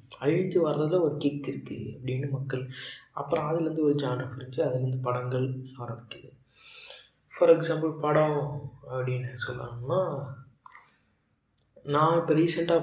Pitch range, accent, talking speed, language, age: 125-145 Hz, native, 110 wpm, Tamil, 20-39